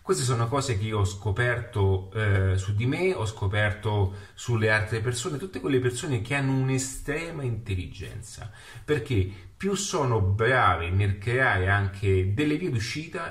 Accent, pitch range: native, 100-125 Hz